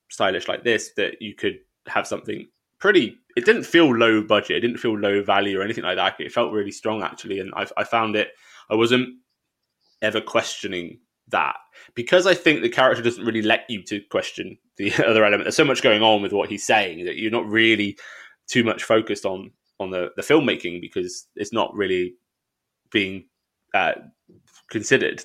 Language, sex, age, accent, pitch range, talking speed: English, male, 20-39, British, 95-120 Hz, 190 wpm